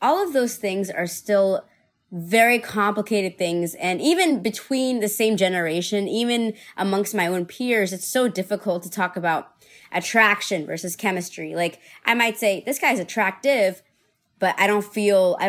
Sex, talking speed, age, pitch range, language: female, 160 wpm, 20-39, 190-245 Hz, English